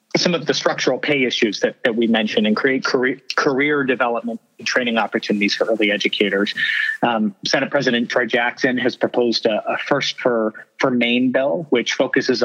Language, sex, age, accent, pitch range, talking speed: English, male, 30-49, American, 110-135 Hz, 180 wpm